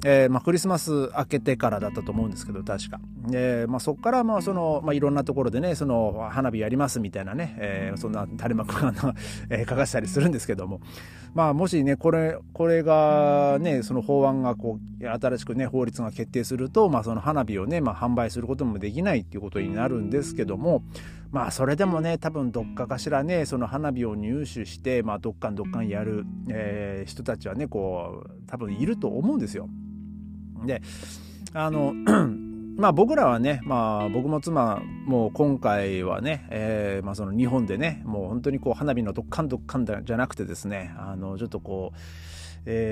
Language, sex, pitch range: Japanese, male, 105-140 Hz